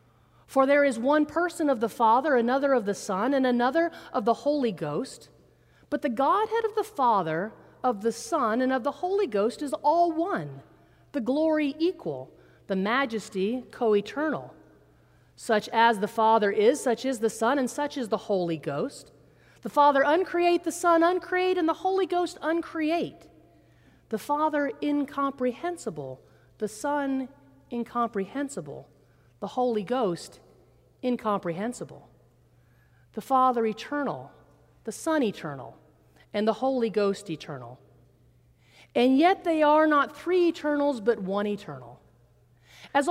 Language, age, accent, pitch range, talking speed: English, 40-59, American, 205-310 Hz, 140 wpm